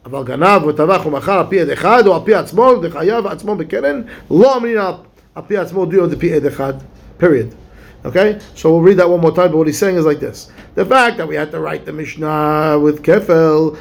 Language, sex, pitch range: English, male, 165-220 Hz